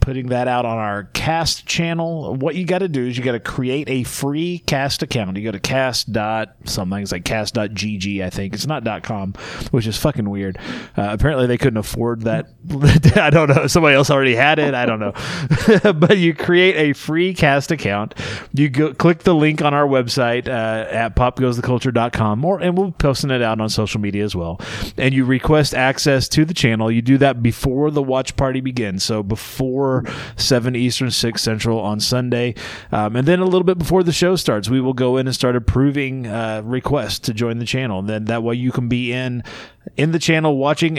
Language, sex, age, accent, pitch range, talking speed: English, male, 30-49, American, 110-145 Hz, 210 wpm